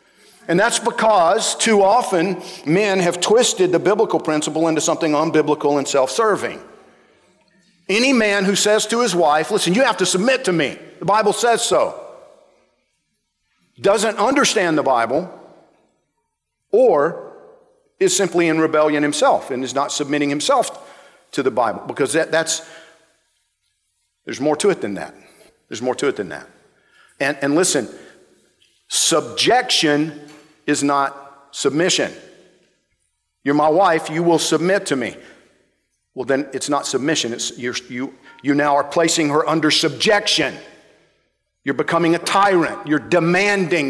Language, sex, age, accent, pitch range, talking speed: English, male, 50-69, American, 145-195 Hz, 140 wpm